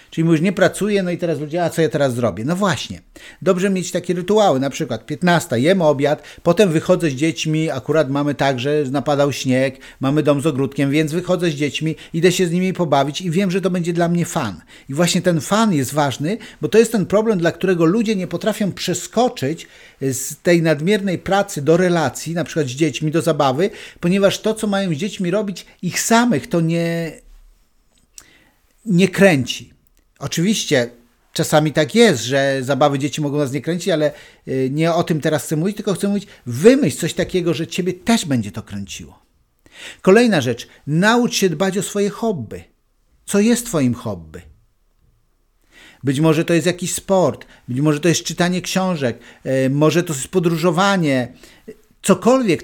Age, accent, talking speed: 50-69, native, 180 wpm